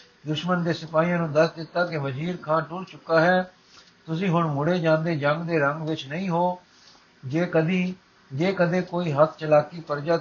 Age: 60-79